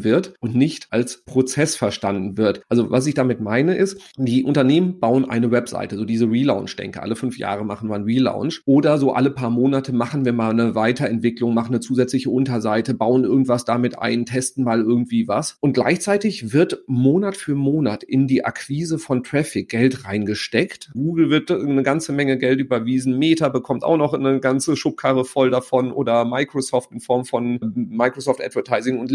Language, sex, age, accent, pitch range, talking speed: German, male, 40-59, German, 120-140 Hz, 180 wpm